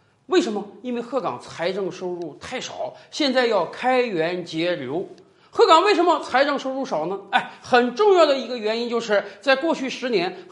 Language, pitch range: Chinese, 200-325 Hz